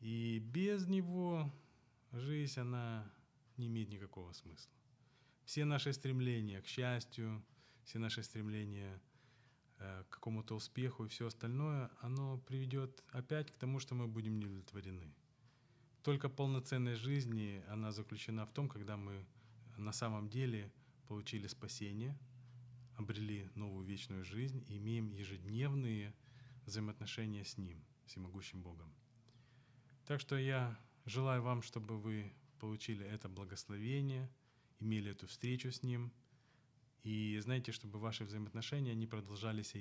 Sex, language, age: male, Ukrainian, 20-39